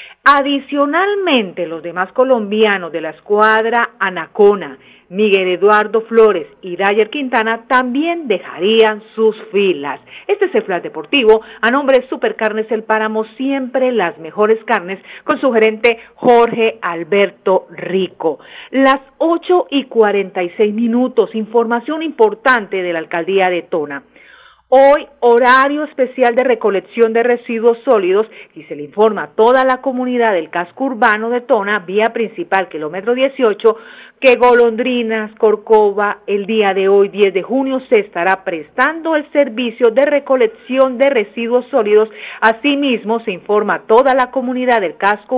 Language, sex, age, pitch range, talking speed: Spanish, female, 40-59, 210-255 Hz, 140 wpm